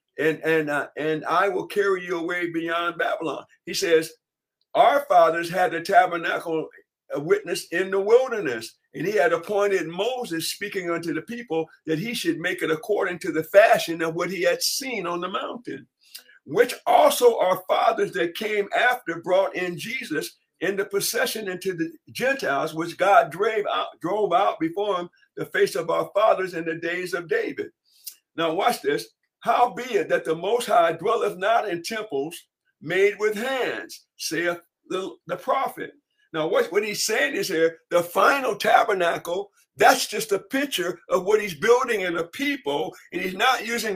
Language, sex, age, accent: English, male, 50-69, American